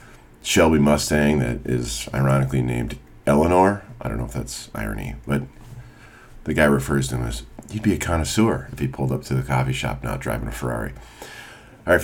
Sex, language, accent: male, English, American